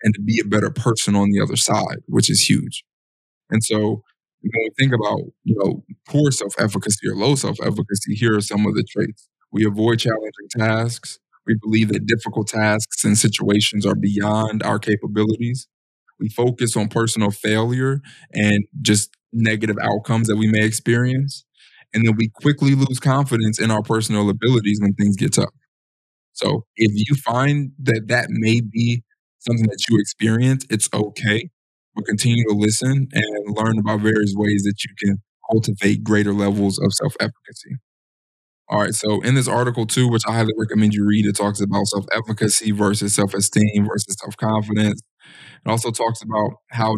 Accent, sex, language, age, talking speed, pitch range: American, male, English, 20-39, 165 wpm, 105-115 Hz